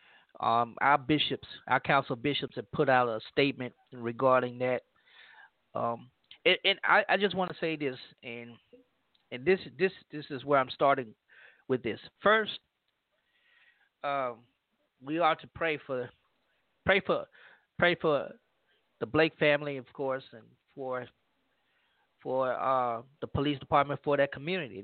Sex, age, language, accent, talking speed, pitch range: male, 30-49, English, American, 145 wpm, 130-180 Hz